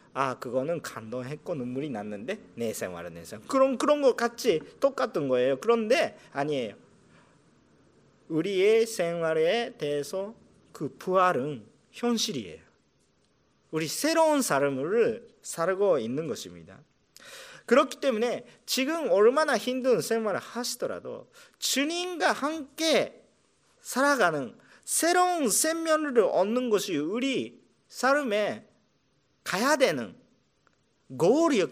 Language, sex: Japanese, male